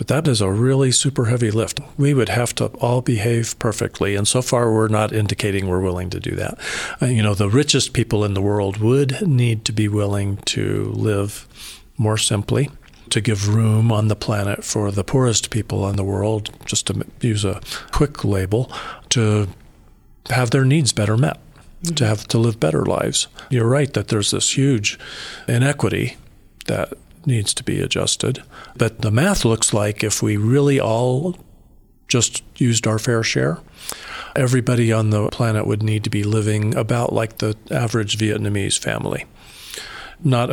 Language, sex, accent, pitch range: English, male, American, 105-125 Hz